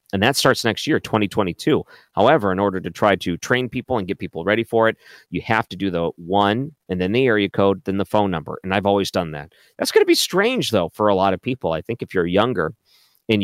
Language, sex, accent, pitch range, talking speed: English, male, American, 90-110 Hz, 255 wpm